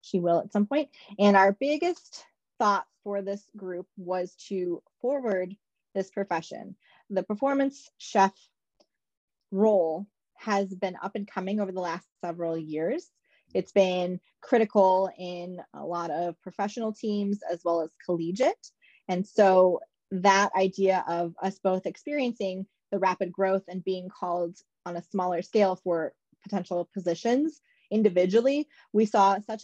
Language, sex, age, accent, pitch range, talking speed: English, female, 20-39, American, 175-205 Hz, 140 wpm